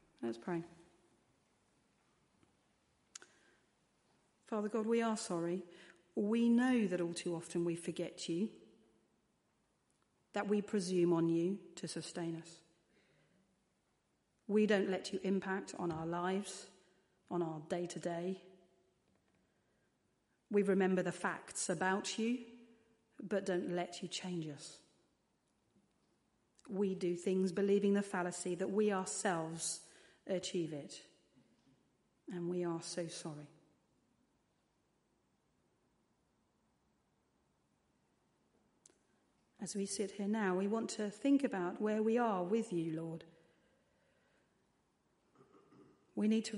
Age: 40-59